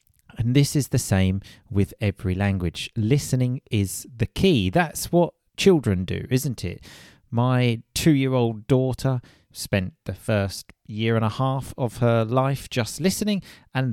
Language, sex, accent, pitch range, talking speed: English, male, British, 100-135 Hz, 145 wpm